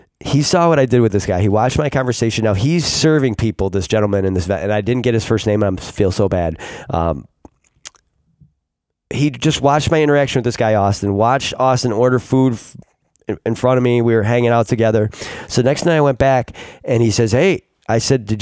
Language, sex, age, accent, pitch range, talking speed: English, male, 20-39, American, 100-125 Hz, 220 wpm